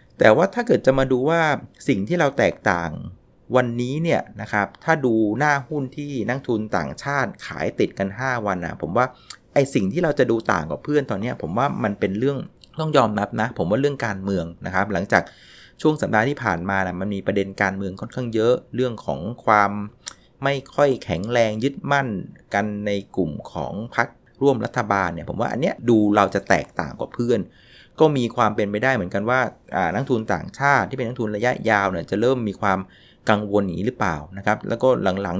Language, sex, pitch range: Thai, male, 100-125 Hz